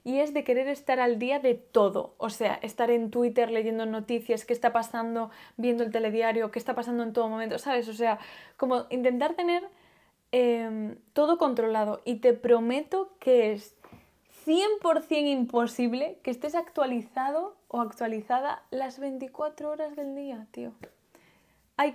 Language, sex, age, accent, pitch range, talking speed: Spanish, female, 10-29, Spanish, 225-280 Hz, 155 wpm